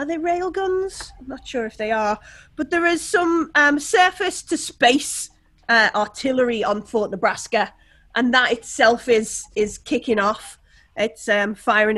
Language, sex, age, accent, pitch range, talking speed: English, female, 30-49, British, 210-295 Hz, 155 wpm